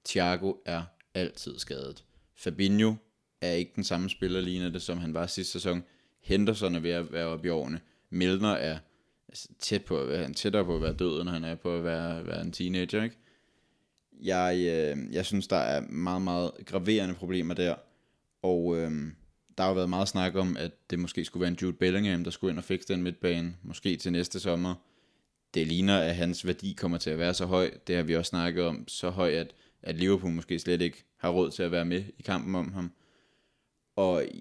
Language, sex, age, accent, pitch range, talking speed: Danish, male, 20-39, native, 85-95 Hz, 200 wpm